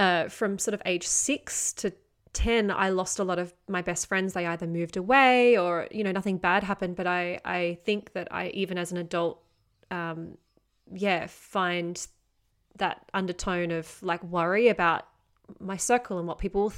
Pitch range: 175-205 Hz